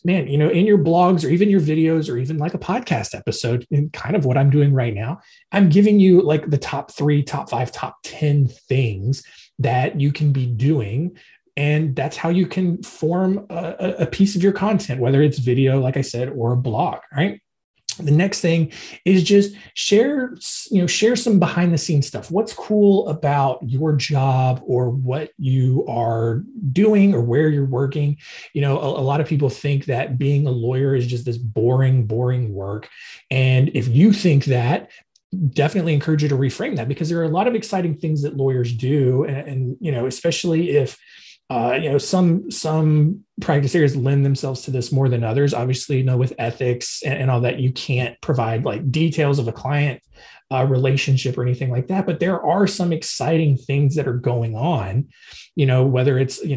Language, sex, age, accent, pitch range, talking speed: English, male, 30-49, American, 130-165 Hz, 200 wpm